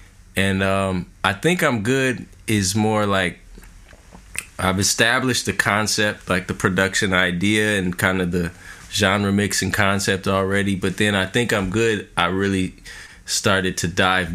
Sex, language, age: male, English, 20-39